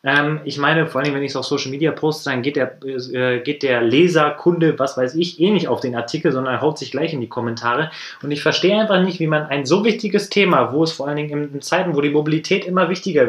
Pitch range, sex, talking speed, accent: 125-165 Hz, male, 260 wpm, German